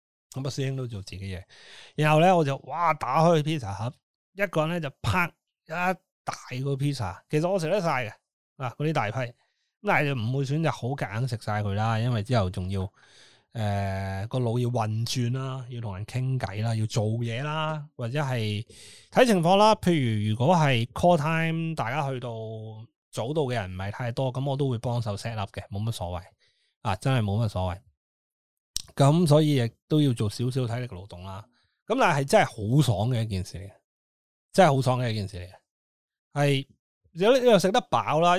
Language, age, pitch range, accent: Chinese, 20-39, 110-155 Hz, native